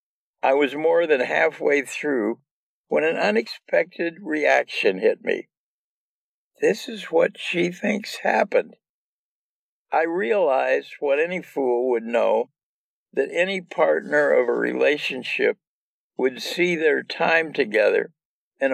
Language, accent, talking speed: English, American, 120 wpm